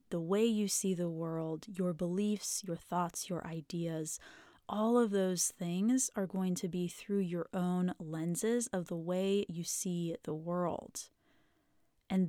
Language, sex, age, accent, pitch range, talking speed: English, female, 20-39, American, 180-225 Hz, 155 wpm